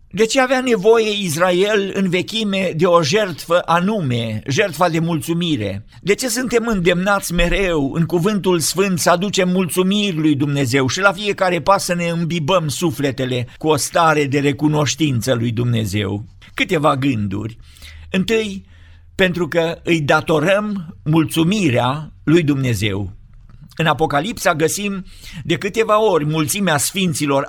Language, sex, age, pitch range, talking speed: Romanian, male, 50-69, 140-185 Hz, 130 wpm